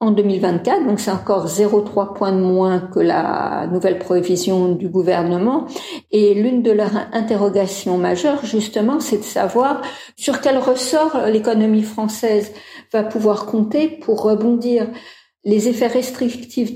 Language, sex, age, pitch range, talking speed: French, female, 50-69, 185-235 Hz, 135 wpm